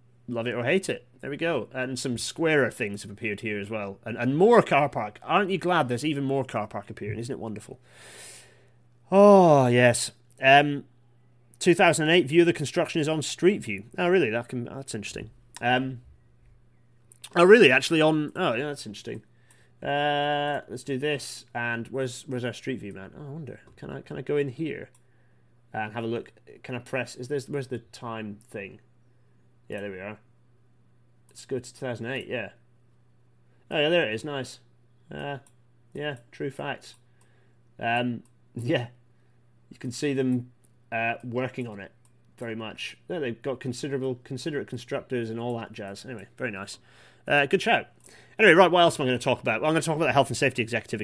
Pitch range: 120-140 Hz